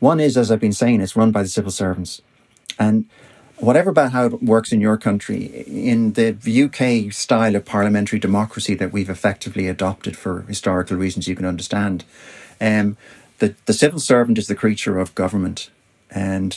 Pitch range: 95-120 Hz